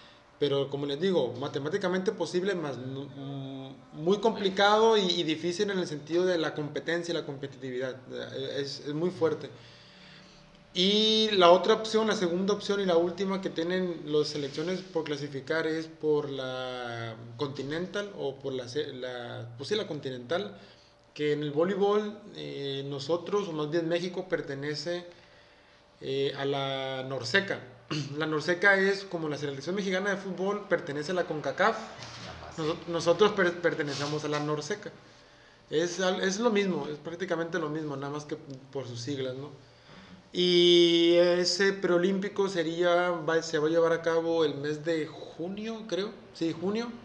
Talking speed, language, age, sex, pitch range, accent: 150 wpm, Spanish, 20-39, male, 140-185 Hz, Mexican